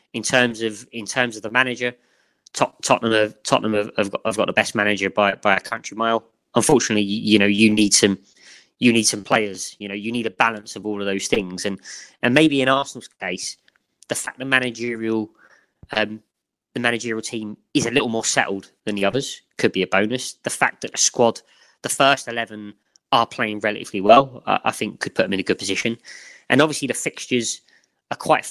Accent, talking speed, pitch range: British, 205 wpm, 105-130 Hz